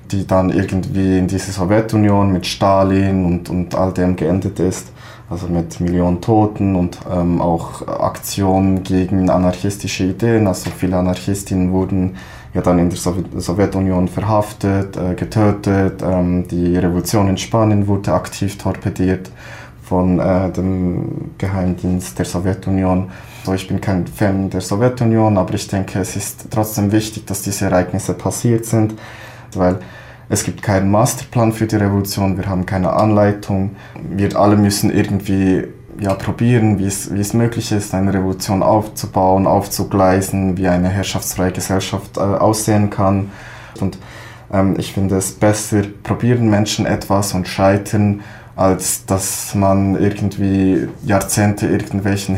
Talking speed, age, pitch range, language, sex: 135 wpm, 20-39, 95-105 Hz, German, male